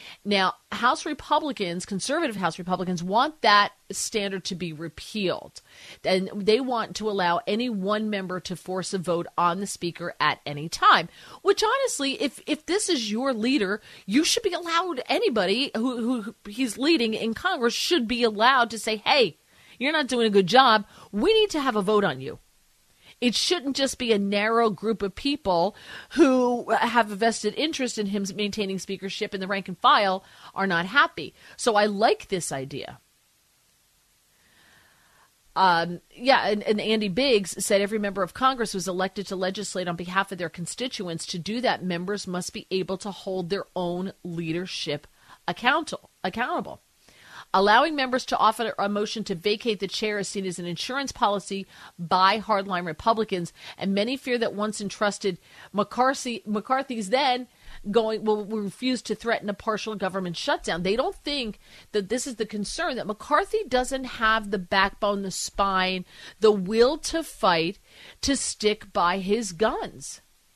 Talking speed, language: 170 wpm, English